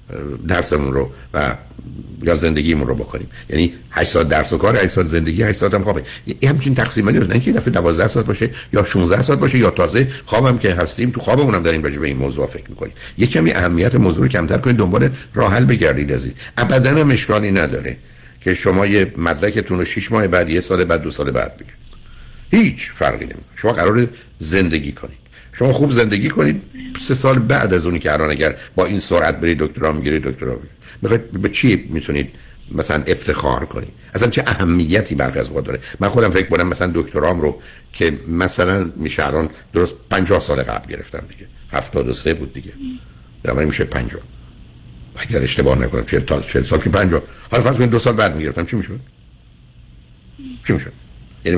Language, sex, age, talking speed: Persian, male, 60-79, 185 wpm